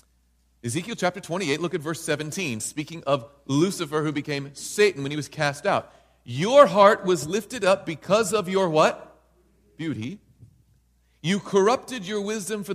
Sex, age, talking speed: male, 40-59, 155 wpm